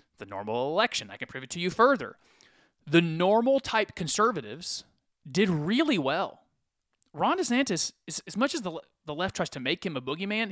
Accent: American